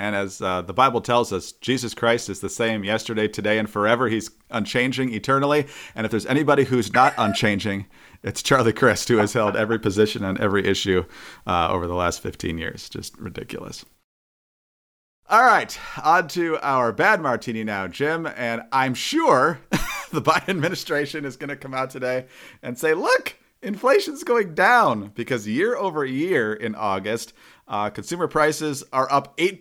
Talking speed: 170 wpm